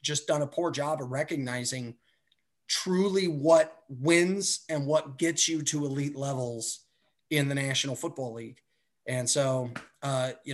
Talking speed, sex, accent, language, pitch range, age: 150 wpm, male, American, English, 135-175 Hz, 30-49